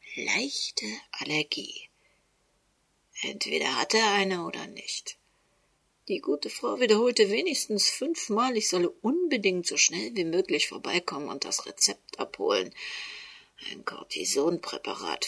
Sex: female